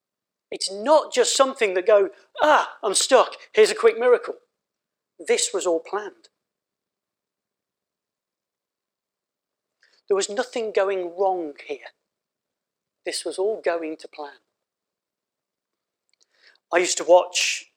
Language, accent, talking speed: English, British, 110 wpm